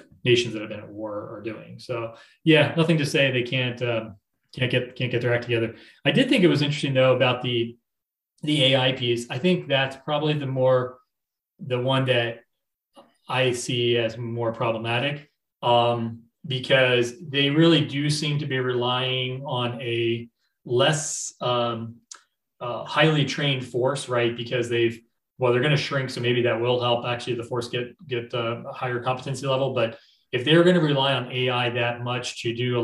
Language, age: English, 30-49